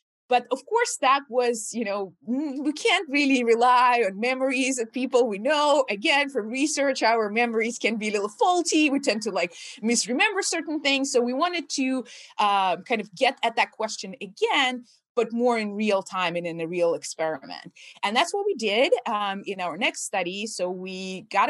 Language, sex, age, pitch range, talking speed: English, female, 20-39, 195-280 Hz, 195 wpm